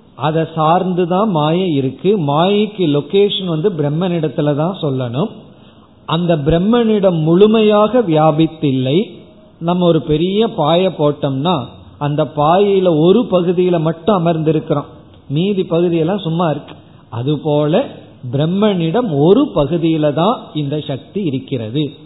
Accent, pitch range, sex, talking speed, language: native, 145-185 Hz, male, 105 wpm, Tamil